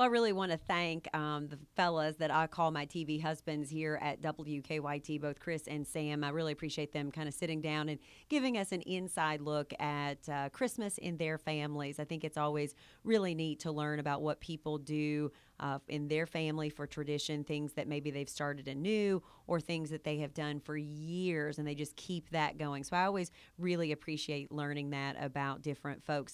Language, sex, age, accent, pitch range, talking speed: English, female, 30-49, American, 150-180 Hz, 205 wpm